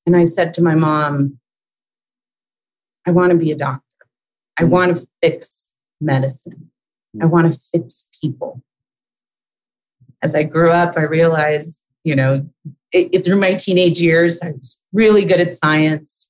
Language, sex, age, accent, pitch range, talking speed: English, female, 40-59, American, 155-195 Hz, 155 wpm